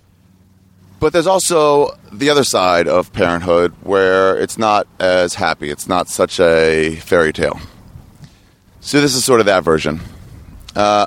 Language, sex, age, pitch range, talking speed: English, male, 30-49, 85-110 Hz, 145 wpm